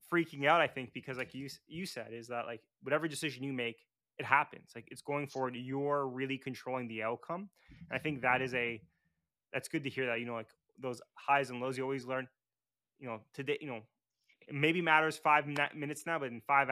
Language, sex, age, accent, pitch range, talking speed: English, male, 20-39, American, 120-150 Hz, 225 wpm